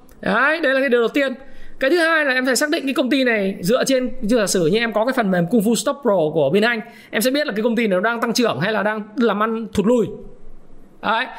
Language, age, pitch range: Vietnamese, 20-39, 200-260 Hz